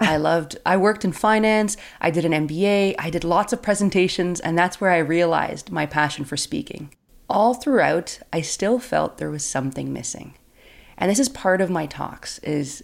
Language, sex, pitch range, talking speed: English, female, 155-205 Hz, 190 wpm